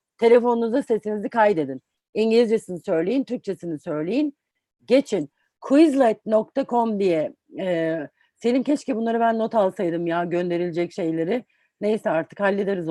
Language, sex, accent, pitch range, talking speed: Turkish, female, native, 195-260 Hz, 105 wpm